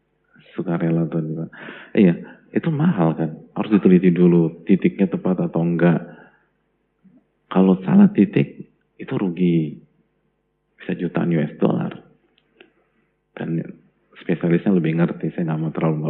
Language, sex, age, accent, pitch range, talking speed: Indonesian, male, 40-59, native, 85-120 Hz, 115 wpm